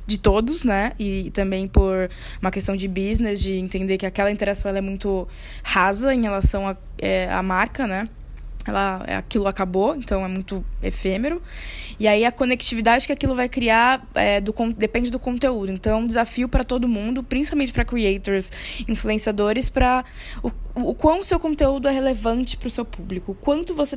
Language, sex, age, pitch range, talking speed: Portuguese, female, 10-29, 200-250 Hz, 180 wpm